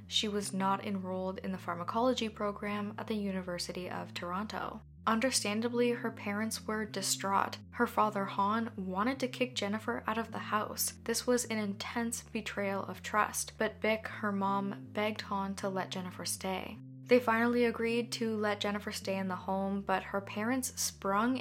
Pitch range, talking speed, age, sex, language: 195-230 Hz, 170 wpm, 10-29, female, English